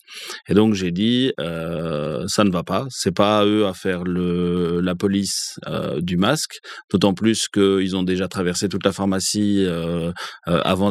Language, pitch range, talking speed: English, 90-110 Hz, 180 wpm